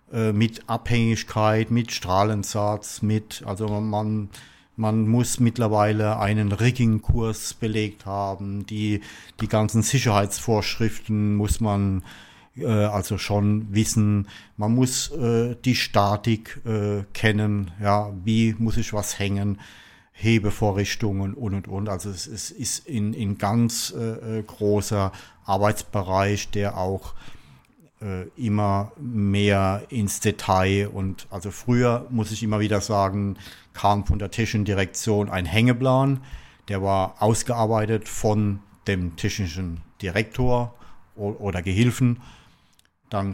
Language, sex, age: German, male, 50-69